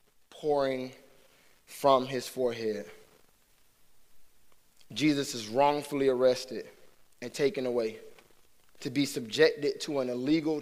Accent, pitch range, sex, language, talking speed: American, 125-155 Hz, male, English, 95 wpm